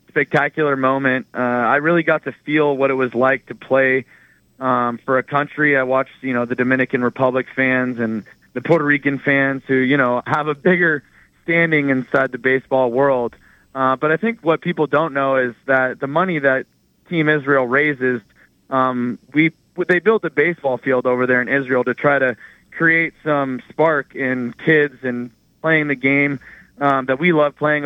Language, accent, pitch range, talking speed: English, American, 130-150 Hz, 185 wpm